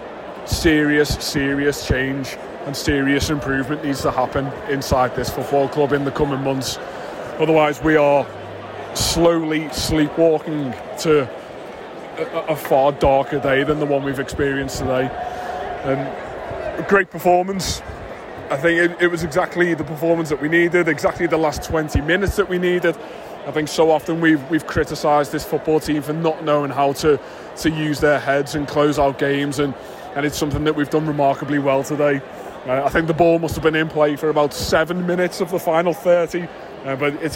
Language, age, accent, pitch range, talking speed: English, 20-39, British, 140-165 Hz, 180 wpm